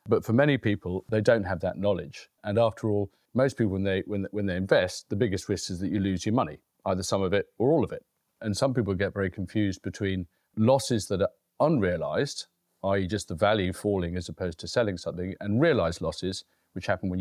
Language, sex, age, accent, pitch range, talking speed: English, male, 40-59, British, 95-110 Hz, 225 wpm